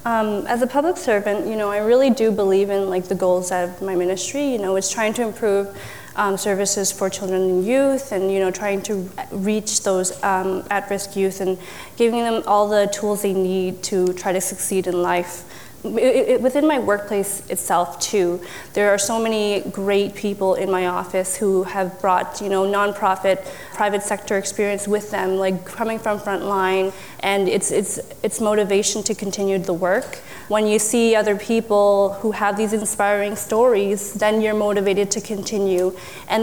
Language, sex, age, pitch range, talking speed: English, female, 20-39, 195-215 Hz, 185 wpm